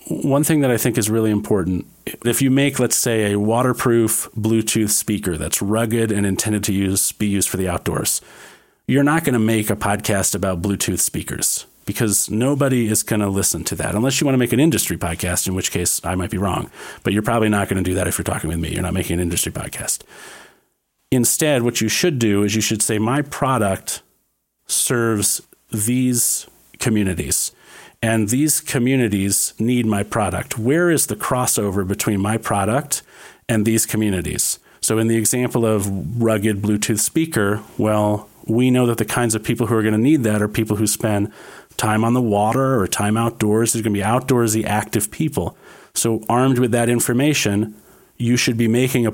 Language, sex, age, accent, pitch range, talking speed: English, male, 40-59, American, 100-120 Hz, 195 wpm